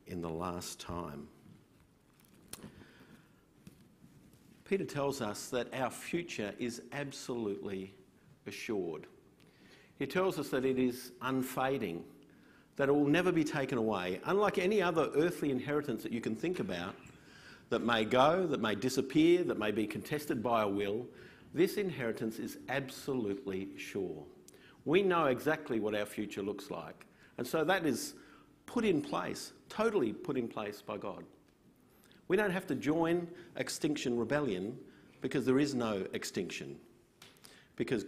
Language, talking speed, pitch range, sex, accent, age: English, 140 wpm, 105-145 Hz, male, Australian, 50-69